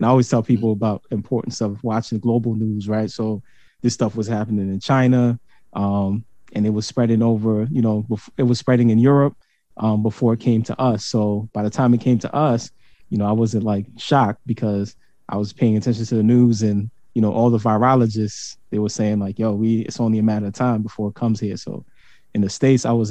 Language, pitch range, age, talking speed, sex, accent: English, 105-120 Hz, 20-39, 225 wpm, male, American